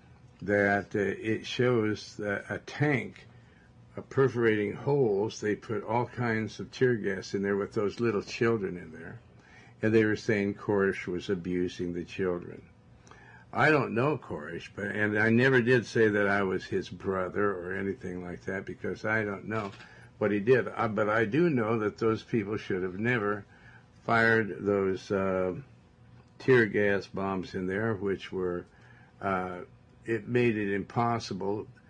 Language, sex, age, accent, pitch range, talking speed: English, male, 60-79, American, 95-115 Hz, 160 wpm